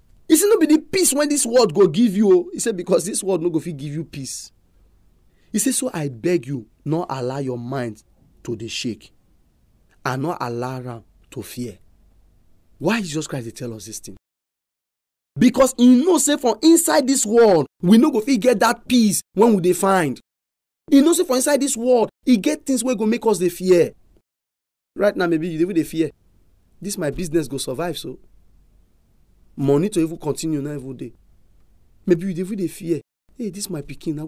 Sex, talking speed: male, 210 wpm